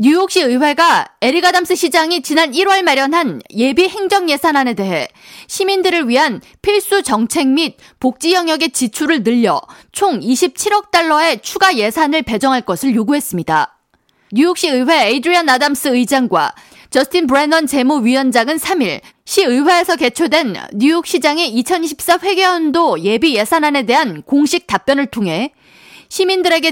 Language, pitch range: Korean, 255-355 Hz